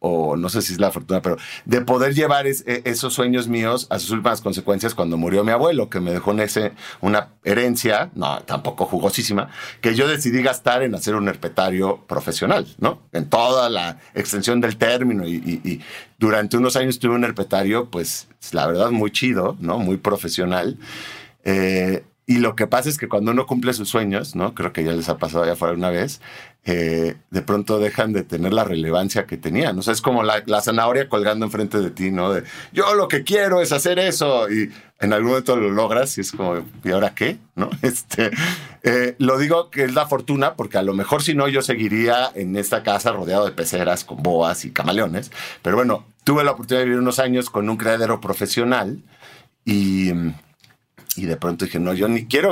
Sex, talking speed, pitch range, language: male, 205 wpm, 95-125 Hz, Spanish